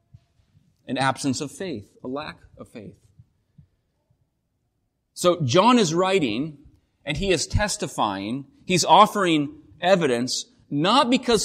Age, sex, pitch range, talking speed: 30-49, male, 135-190 Hz, 110 wpm